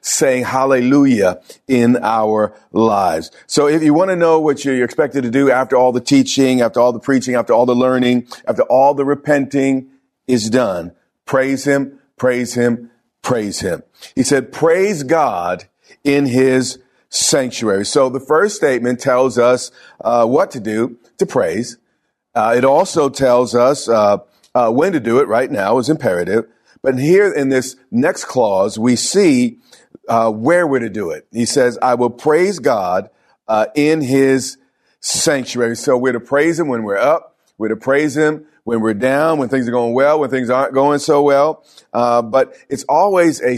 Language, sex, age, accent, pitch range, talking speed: English, male, 50-69, American, 120-145 Hz, 180 wpm